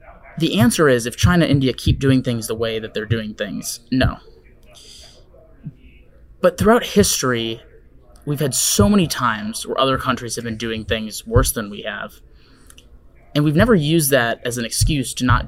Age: 20-39